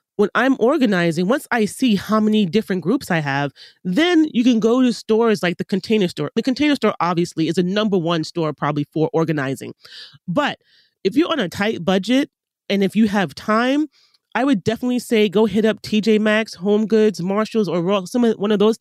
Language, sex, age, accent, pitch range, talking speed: English, male, 30-49, American, 175-225 Hz, 205 wpm